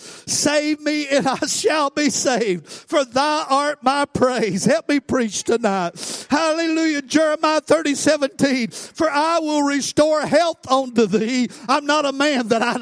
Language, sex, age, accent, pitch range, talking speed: English, male, 50-69, American, 255-305 Hz, 155 wpm